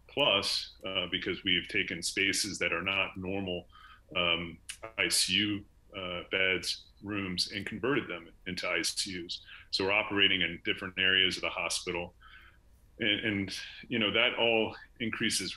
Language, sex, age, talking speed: English, male, 30-49, 140 wpm